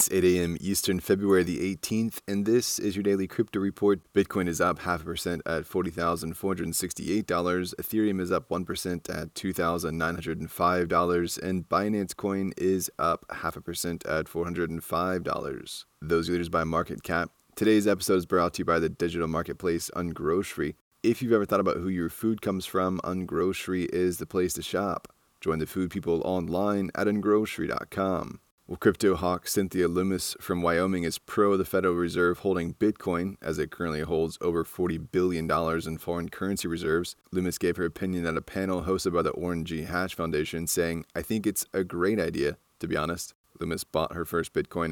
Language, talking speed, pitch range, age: English, 175 wpm, 85-95 Hz, 20-39